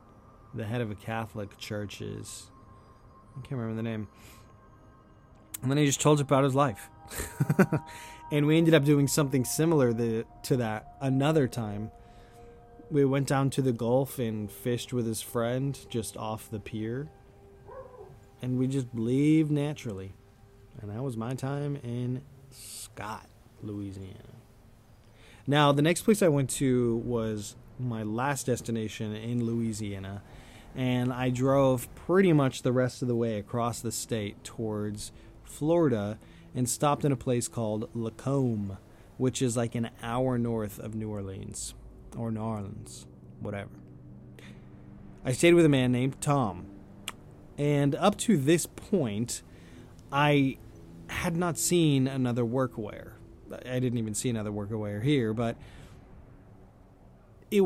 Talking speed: 140 wpm